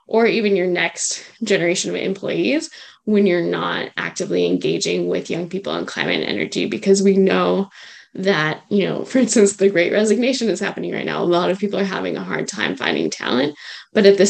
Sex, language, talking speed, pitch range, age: female, English, 200 wpm, 175-210 Hz, 10-29